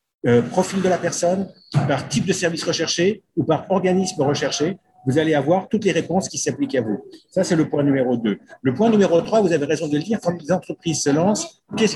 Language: French